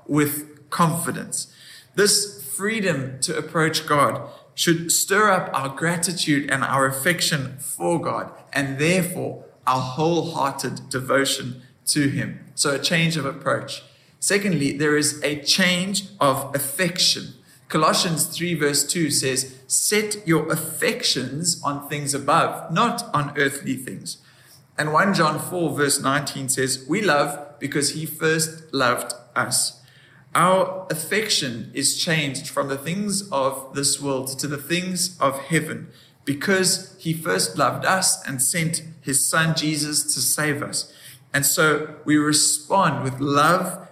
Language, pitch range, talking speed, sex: English, 135-165 Hz, 135 wpm, male